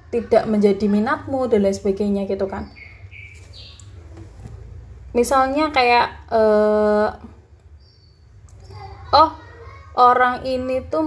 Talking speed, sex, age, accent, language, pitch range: 80 wpm, female, 20-39, native, Indonesian, 190-235 Hz